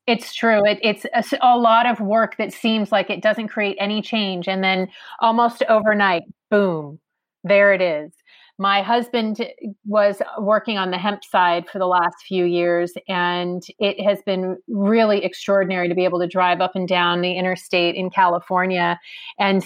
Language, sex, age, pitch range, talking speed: English, female, 30-49, 190-230 Hz, 170 wpm